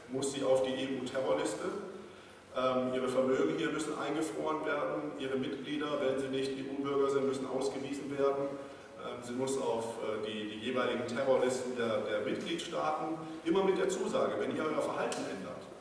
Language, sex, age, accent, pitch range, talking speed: English, male, 40-59, German, 115-140 Hz, 165 wpm